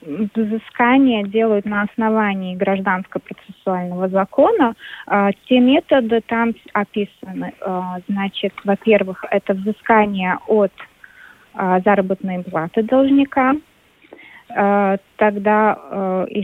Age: 20-39